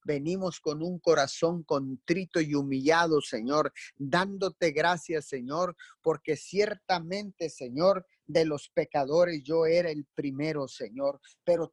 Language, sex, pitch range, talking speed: Spanish, male, 150-185 Hz, 120 wpm